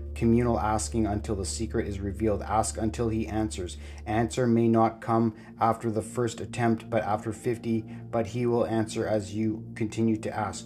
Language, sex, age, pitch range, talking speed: English, male, 30-49, 105-115 Hz, 175 wpm